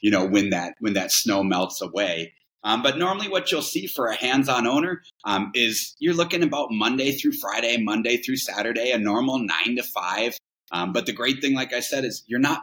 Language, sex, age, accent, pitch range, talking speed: English, male, 30-49, American, 105-135 Hz, 220 wpm